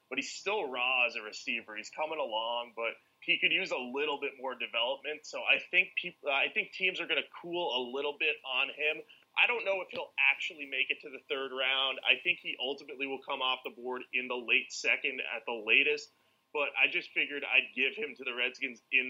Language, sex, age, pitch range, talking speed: English, male, 30-49, 125-160 Hz, 235 wpm